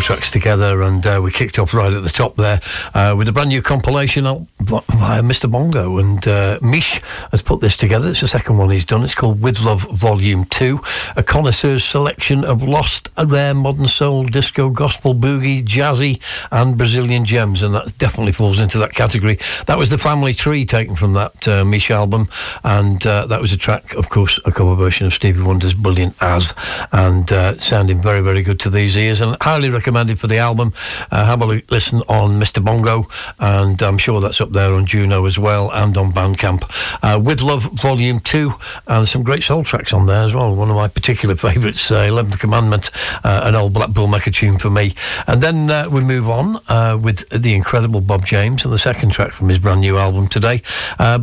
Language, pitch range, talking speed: English, 100-125 Hz, 210 wpm